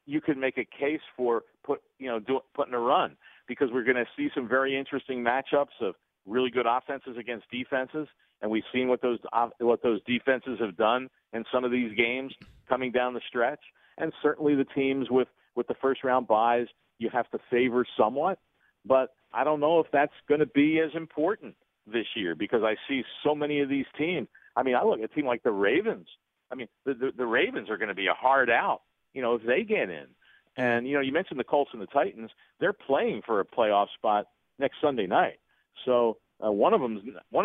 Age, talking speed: 40-59, 210 wpm